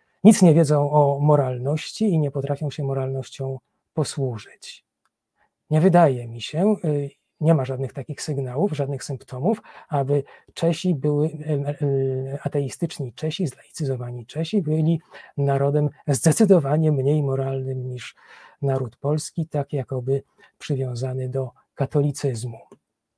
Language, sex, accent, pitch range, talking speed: Polish, male, native, 135-170 Hz, 105 wpm